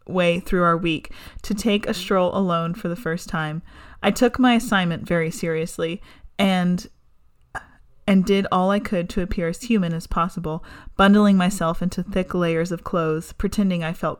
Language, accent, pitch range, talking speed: English, American, 165-190 Hz, 175 wpm